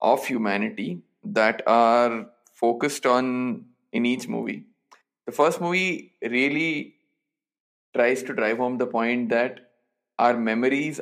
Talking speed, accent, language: 120 wpm, Indian, English